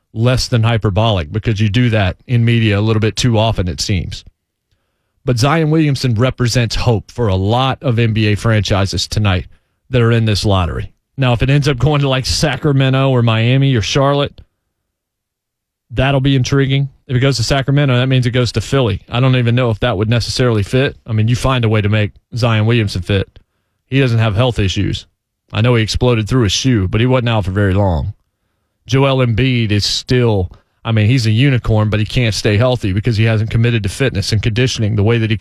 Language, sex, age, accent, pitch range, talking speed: English, male, 30-49, American, 105-130 Hz, 210 wpm